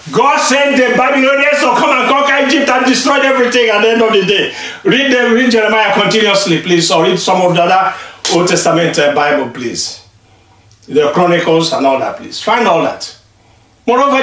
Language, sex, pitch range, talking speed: English, male, 195-275 Hz, 190 wpm